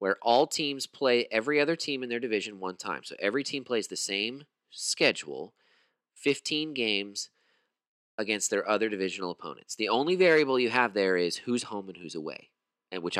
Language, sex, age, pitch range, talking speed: English, male, 30-49, 110-160 Hz, 180 wpm